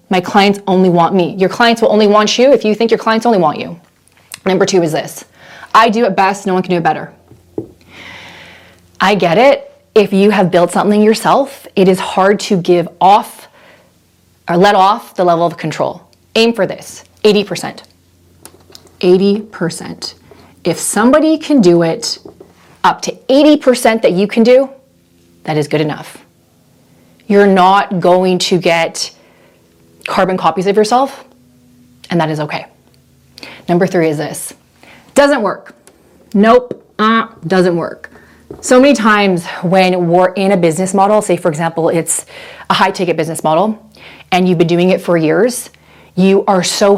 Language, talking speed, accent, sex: English, 160 wpm, American, female